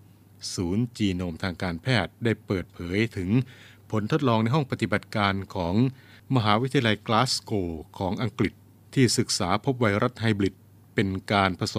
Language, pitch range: Thai, 95-115 Hz